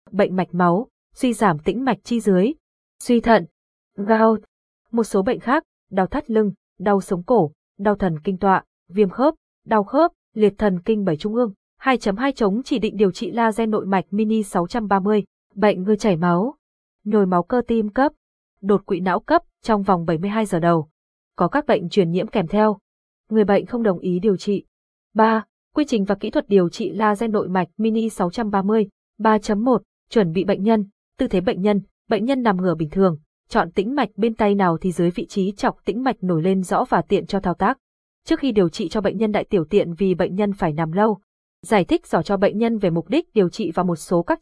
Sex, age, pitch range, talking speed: female, 20-39, 190-230 Hz, 220 wpm